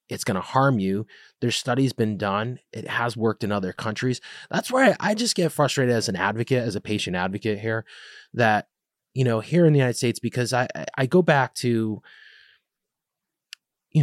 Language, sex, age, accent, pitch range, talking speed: English, male, 30-49, American, 105-145 Hz, 195 wpm